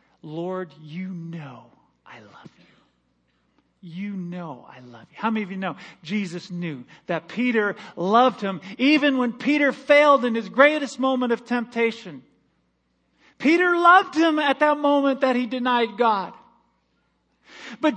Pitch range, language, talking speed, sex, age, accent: 185-275 Hz, English, 145 wpm, male, 40-59, American